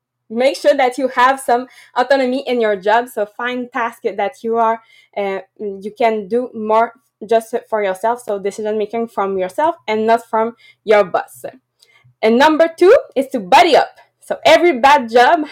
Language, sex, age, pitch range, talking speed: English, female, 20-39, 225-275 Hz, 175 wpm